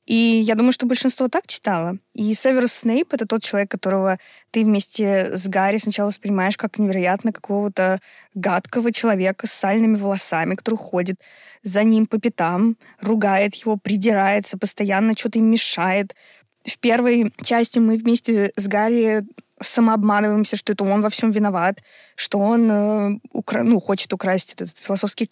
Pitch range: 200-230 Hz